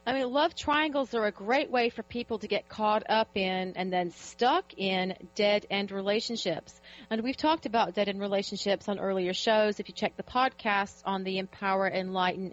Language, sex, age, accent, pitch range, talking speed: English, female, 40-59, American, 185-220 Hz, 195 wpm